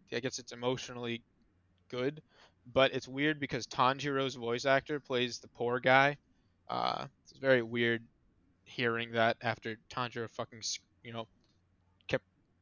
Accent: American